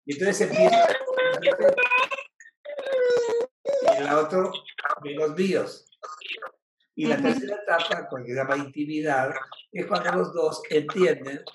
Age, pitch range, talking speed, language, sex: 60-79, 150-230 Hz, 120 wpm, Spanish, male